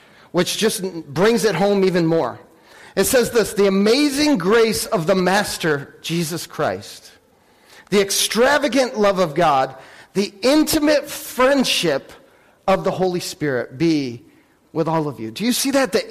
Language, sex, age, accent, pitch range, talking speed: English, male, 40-59, American, 165-210 Hz, 150 wpm